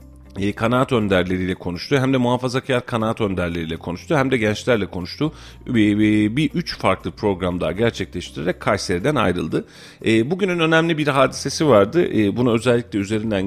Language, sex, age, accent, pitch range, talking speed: Turkish, male, 40-59, native, 95-130 Hz, 145 wpm